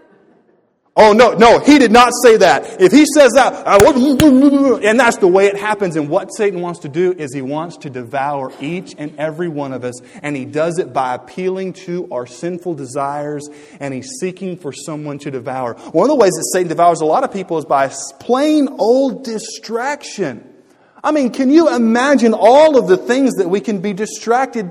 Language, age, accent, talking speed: English, 30-49, American, 200 wpm